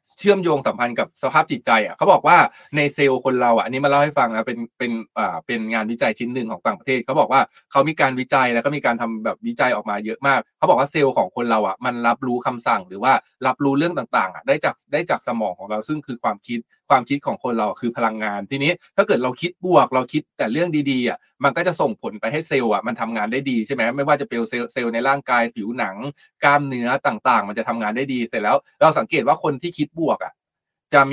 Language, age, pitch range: Thai, 20-39, 120-150 Hz